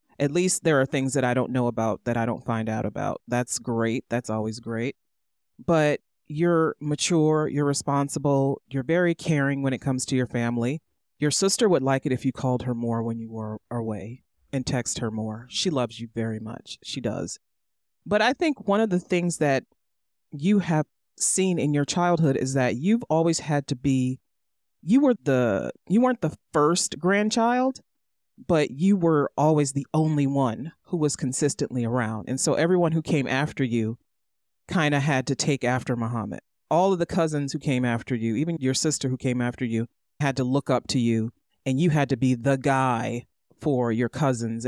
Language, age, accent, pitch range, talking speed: English, 30-49, American, 120-155 Hz, 195 wpm